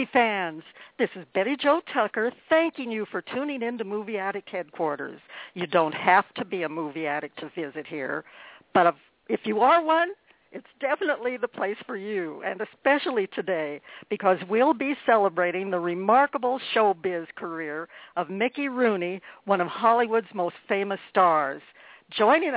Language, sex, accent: English, female, American